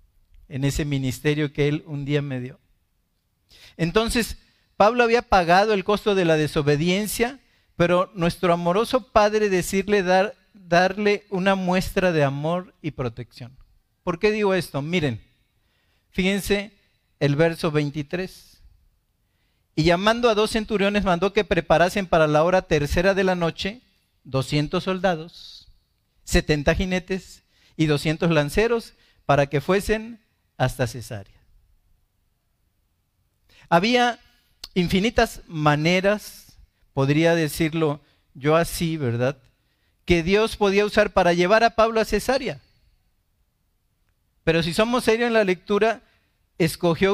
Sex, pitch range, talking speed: male, 130-200 Hz, 120 wpm